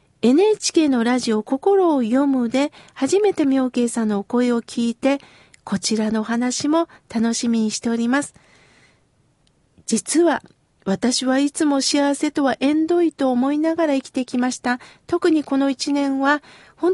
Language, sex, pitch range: Japanese, female, 245-300 Hz